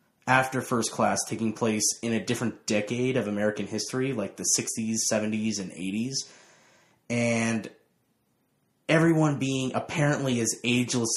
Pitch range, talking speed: 110-135 Hz, 130 wpm